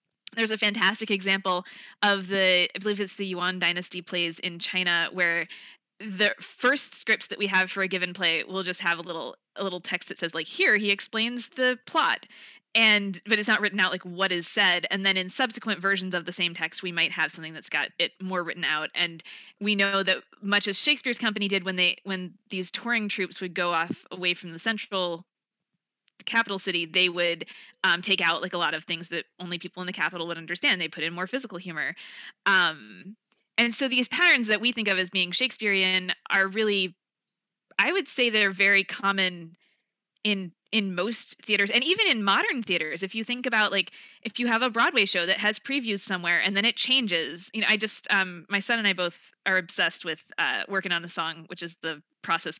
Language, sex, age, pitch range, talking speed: English, female, 20-39, 180-220 Hz, 215 wpm